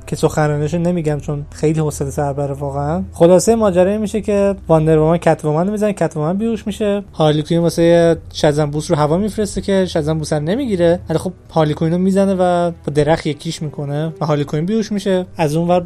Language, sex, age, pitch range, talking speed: Persian, male, 20-39, 150-175 Hz, 170 wpm